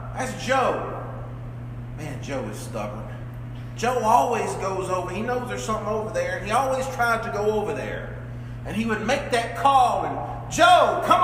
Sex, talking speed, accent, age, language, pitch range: male, 170 wpm, American, 40-59, English, 120-175 Hz